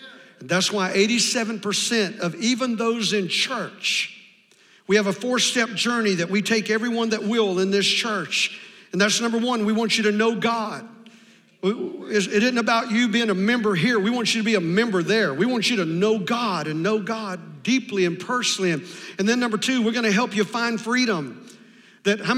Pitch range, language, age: 205-245 Hz, English, 50-69